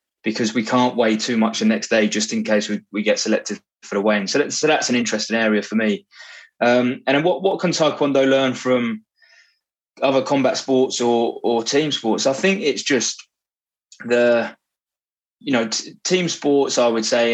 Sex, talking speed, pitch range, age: male, 195 wpm, 110-140 Hz, 20-39